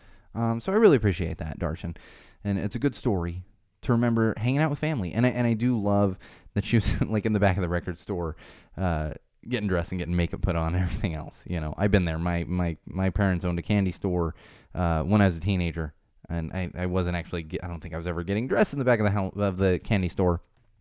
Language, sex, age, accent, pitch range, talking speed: English, male, 20-39, American, 85-110 Hz, 255 wpm